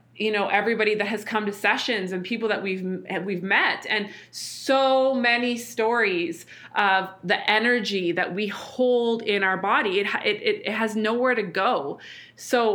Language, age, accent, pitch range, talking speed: English, 20-39, American, 190-235 Hz, 165 wpm